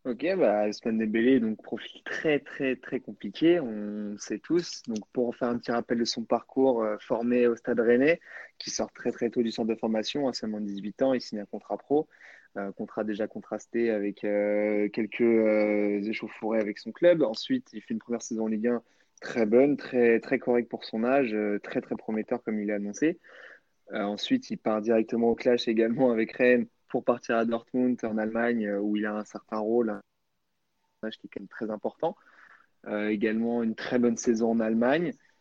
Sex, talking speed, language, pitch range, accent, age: male, 210 wpm, French, 105-120 Hz, French, 20-39